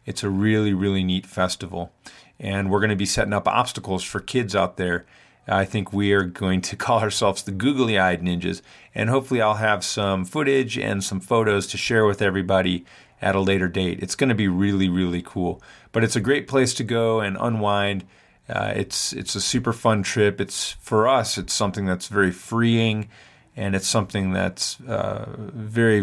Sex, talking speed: male, 190 wpm